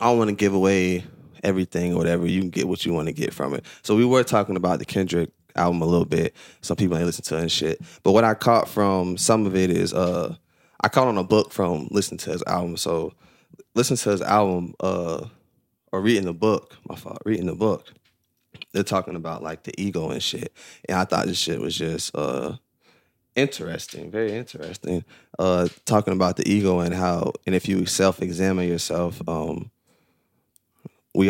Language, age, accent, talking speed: English, 20-39, American, 205 wpm